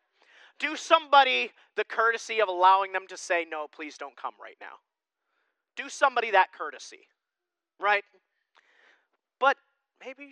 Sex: male